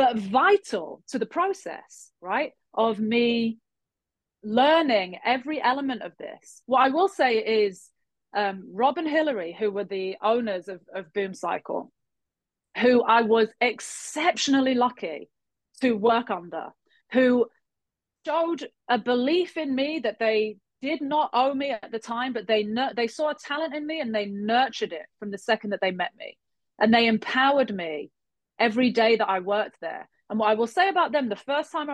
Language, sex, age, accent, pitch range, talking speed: English, female, 30-49, British, 205-270 Hz, 170 wpm